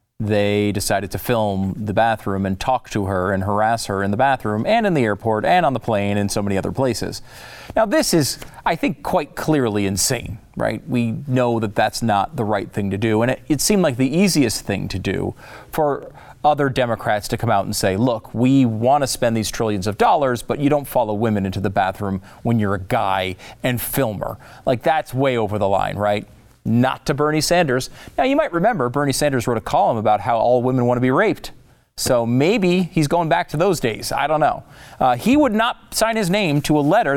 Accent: American